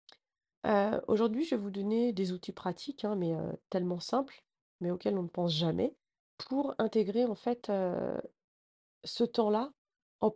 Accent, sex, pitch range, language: French, female, 190-235 Hz, French